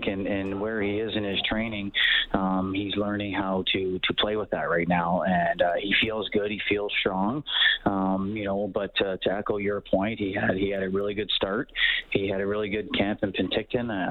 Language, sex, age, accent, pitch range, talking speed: English, male, 30-49, American, 95-105 Hz, 220 wpm